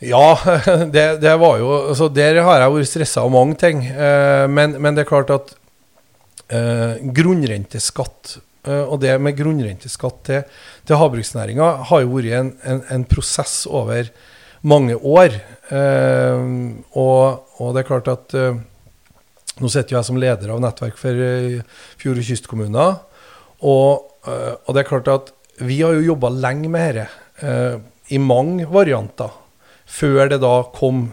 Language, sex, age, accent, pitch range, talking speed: English, male, 40-59, Swedish, 125-155 Hz, 140 wpm